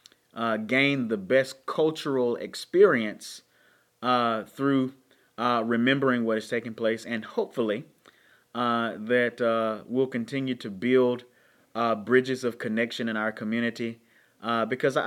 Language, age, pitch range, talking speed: English, 30-49, 115-135 Hz, 125 wpm